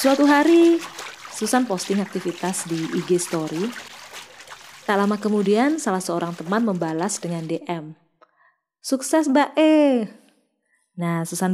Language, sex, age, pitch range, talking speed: Indonesian, female, 20-39, 170-255 Hz, 110 wpm